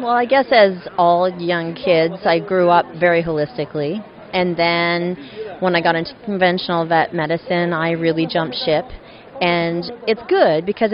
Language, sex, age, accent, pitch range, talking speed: English, female, 30-49, American, 165-190 Hz, 160 wpm